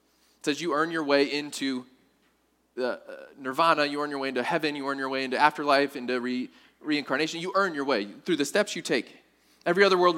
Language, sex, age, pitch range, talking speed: English, male, 20-39, 145-190 Hz, 205 wpm